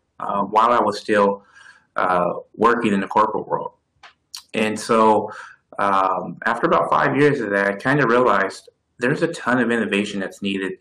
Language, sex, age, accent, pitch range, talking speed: English, male, 30-49, American, 100-120 Hz, 170 wpm